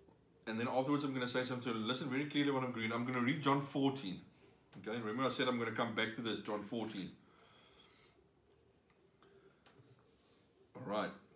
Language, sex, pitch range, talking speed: English, male, 120-150 Hz, 180 wpm